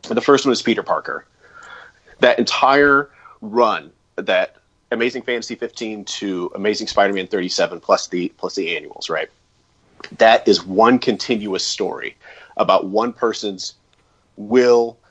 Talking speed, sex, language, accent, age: 140 wpm, male, English, American, 30-49